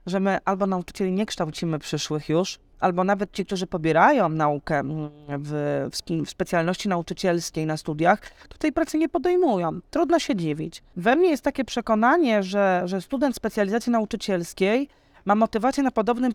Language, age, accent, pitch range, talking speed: Polish, 30-49, native, 180-250 Hz, 150 wpm